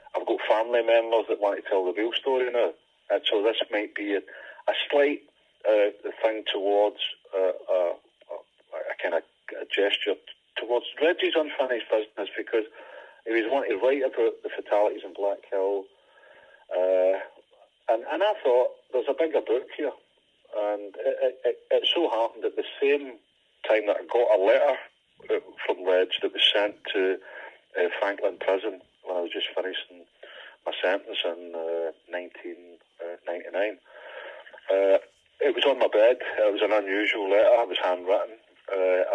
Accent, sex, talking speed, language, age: British, male, 160 wpm, English, 40-59